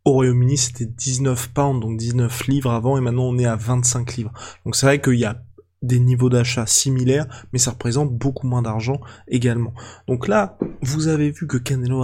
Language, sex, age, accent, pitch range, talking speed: French, male, 20-39, French, 115-135 Hz, 200 wpm